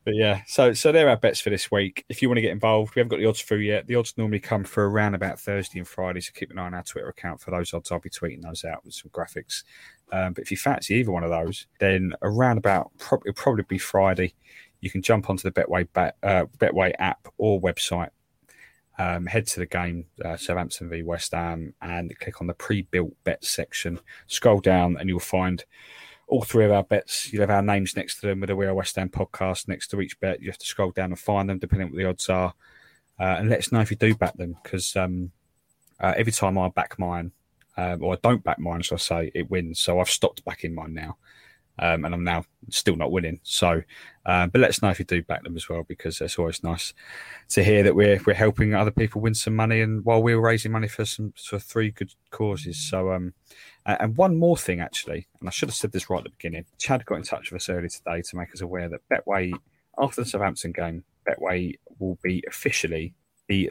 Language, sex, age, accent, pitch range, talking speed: English, male, 30-49, British, 90-105 Hz, 245 wpm